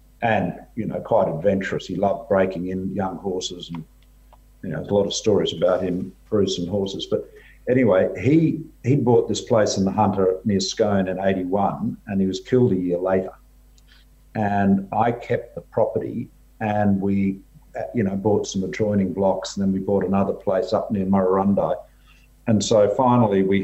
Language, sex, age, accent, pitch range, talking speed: English, male, 50-69, Australian, 95-110 Hz, 180 wpm